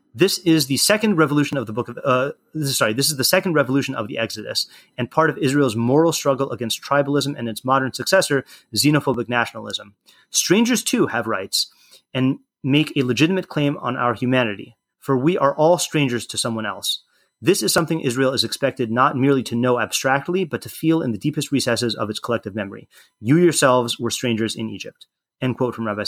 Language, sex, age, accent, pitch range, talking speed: English, male, 30-49, American, 120-150 Hz, 195 wpm